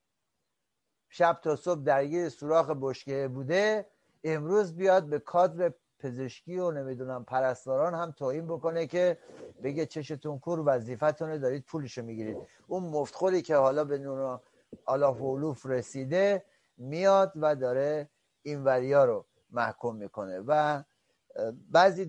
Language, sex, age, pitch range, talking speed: Persian, male, 60-79, 145-180 Hz, 120 wpm